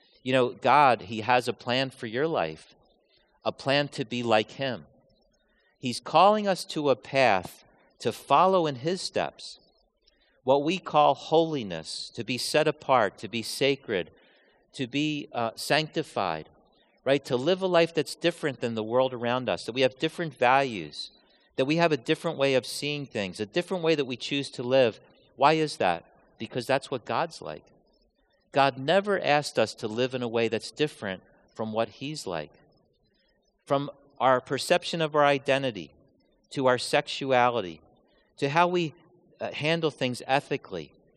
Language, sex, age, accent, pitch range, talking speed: English, male, 50-69, American, 120-155 Hz, 170 wpm